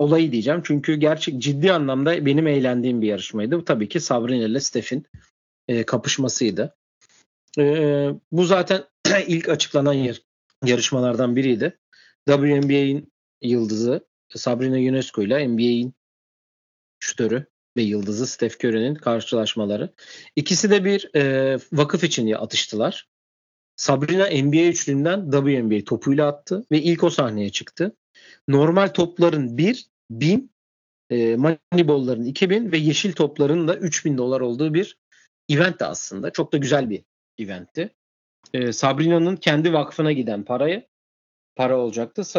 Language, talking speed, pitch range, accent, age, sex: Turkish, 125 wpm, 120-160 Hz, native, 40-59, male